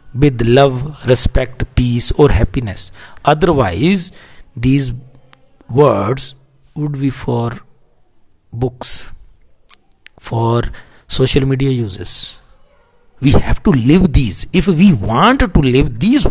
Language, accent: Hindi, native